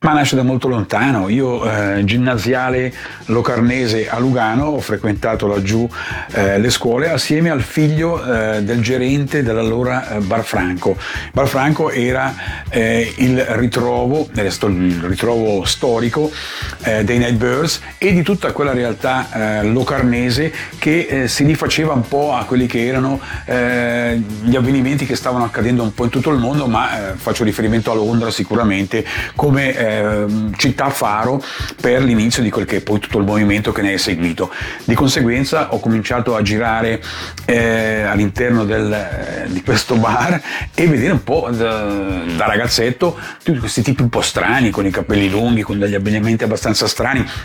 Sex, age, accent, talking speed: male, 40-59, native, 160 wpm